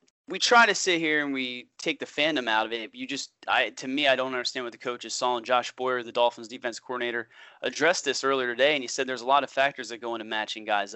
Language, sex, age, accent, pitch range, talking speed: English, male, 30-49, American, 120-140 Hz, 270 wpm